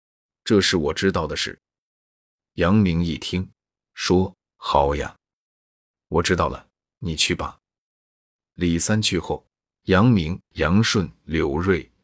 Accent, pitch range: native, 80-100 Hz